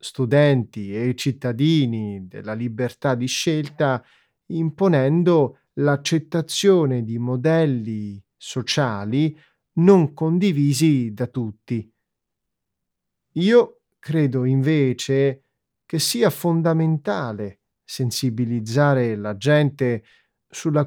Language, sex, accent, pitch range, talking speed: Italian, male, native, 120-155 Hz, 75 wpm